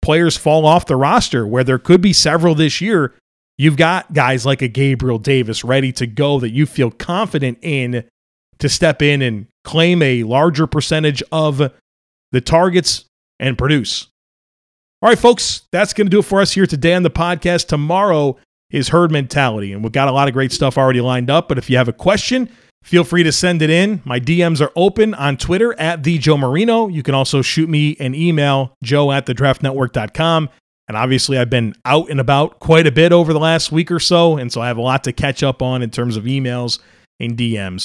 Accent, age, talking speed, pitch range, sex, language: American, 30-49, 210 wpm, 130-170 Hz, male, English